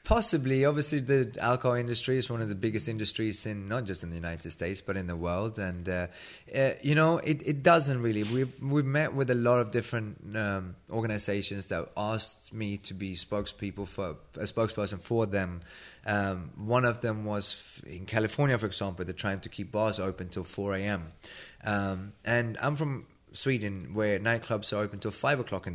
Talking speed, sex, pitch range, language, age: 190 wpm, male, 95-120 Hz, English, 20-39